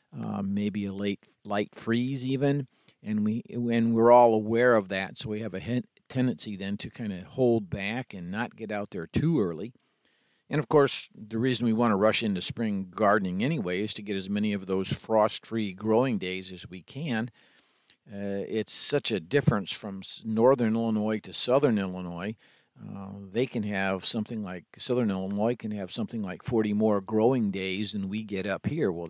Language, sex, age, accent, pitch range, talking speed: English, male, 50-69, American, 100-120 Hz, 190 wpm